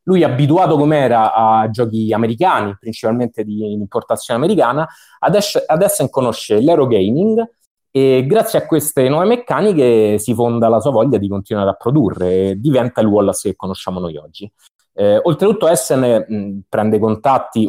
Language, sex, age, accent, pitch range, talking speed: Italian, male, 30-49, native, 110-145 Hz, 150 wpm